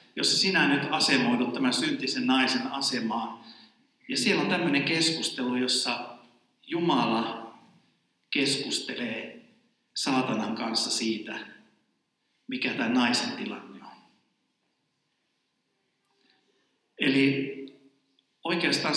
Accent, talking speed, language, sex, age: native, 80 wpm, Finnish, male, 50-69